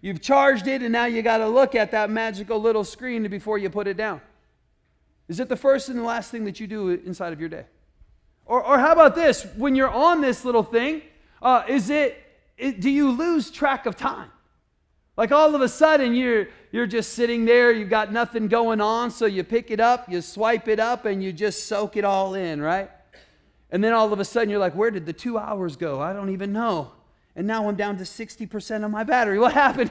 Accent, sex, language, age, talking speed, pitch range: American, male, English, 30-49, 235 wpm, 210-275 Hz